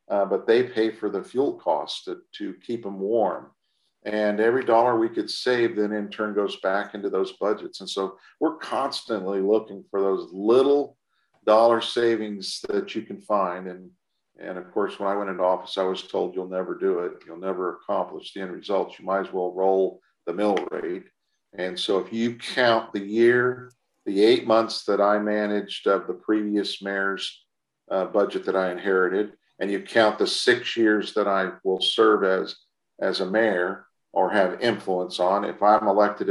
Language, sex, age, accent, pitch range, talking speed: English, male, 50-69, American, 95-125 Hz, 190 wpm